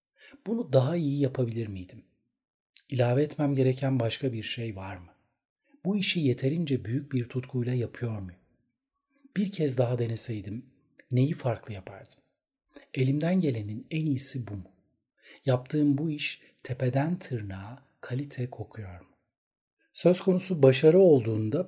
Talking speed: 125 wpm